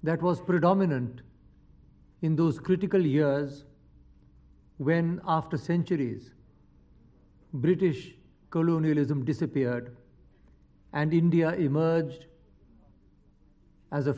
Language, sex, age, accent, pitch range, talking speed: English, male, 50-69, Indian, 130-160 Hz, 75 wpm